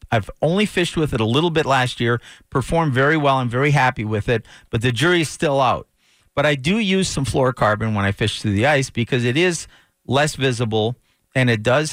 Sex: male